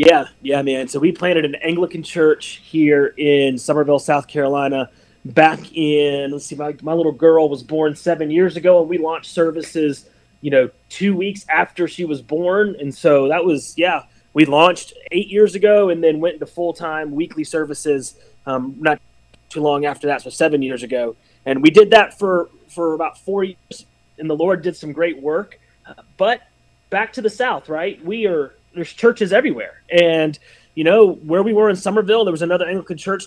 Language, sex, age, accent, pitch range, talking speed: English, male, 30-49, American, 145-180 Hz, 195 wpm